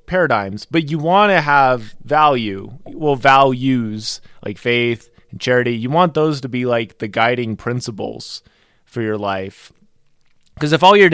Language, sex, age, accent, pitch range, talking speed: English, male, 20-39, American, 120-170 Hz, 155 wpm